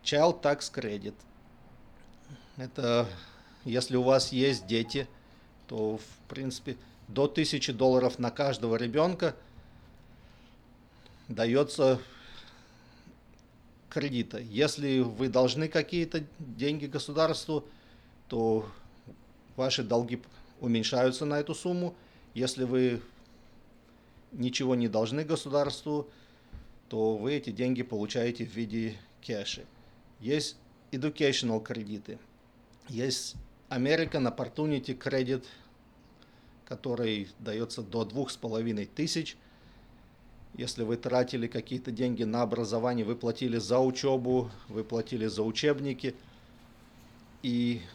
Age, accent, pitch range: 40-59, native, 115-135 Hz